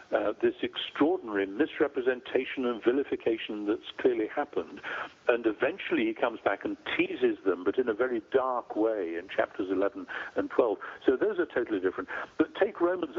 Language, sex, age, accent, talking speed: English, male, 60-79, British, 165 wpm